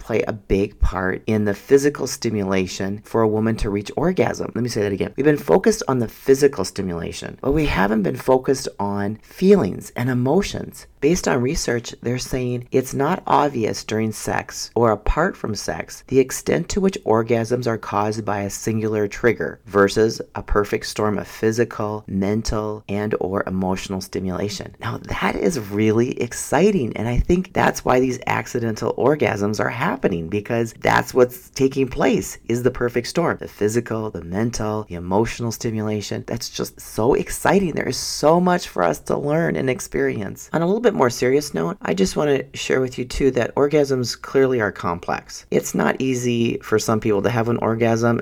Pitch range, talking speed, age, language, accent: 105-135 Hz, 180 wpm, 40-59, English, American